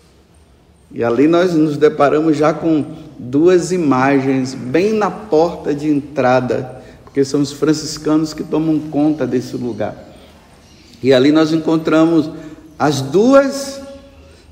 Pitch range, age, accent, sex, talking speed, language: 115-155 Hz, 60-79, Brazilian, male, 120 wpm, Portuguese